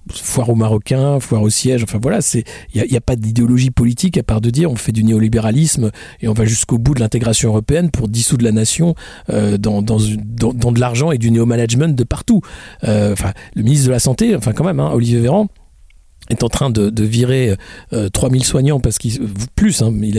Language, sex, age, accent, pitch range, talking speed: French, male, 50-69, French, 110-140 Hz, 220 wpm